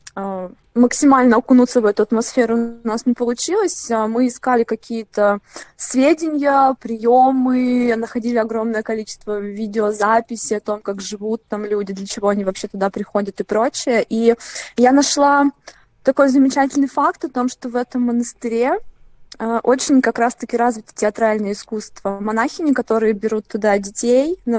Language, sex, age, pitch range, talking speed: Russian, female, 20-39, 210-250 Hz, 135 wpm